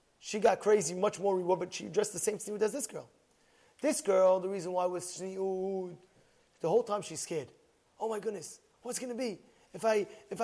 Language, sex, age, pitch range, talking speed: English, male, 30-49, 215-280 Hz, 220 wpm